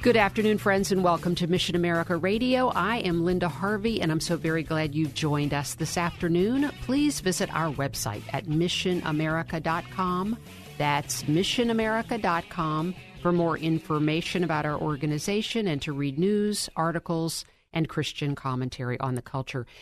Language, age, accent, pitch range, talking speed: English, 50-69, American, 145-180 Hz, 145 wpm